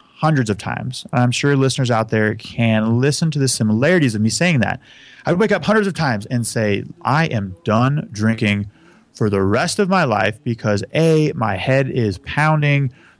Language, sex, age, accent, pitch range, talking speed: English, male, 30-49, American, 110-140 Hz, 190 wpm